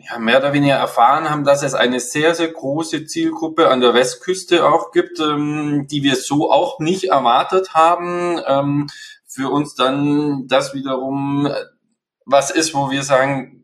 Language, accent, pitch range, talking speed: German, German, 130-150 Hz, 165 wpm